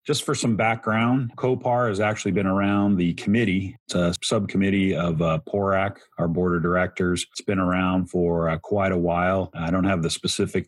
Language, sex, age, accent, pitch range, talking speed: English, male, 40-59, American, 90-100 Hz, 190 wpm